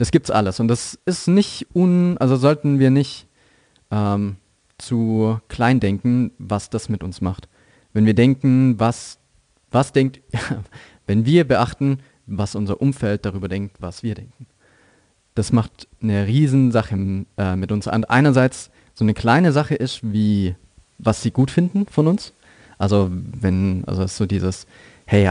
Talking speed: 155 wpm